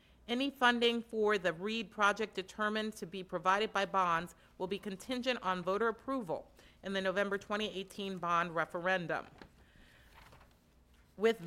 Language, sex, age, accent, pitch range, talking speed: English, female, 40-59, American, 185-230 Hz, 130 wpm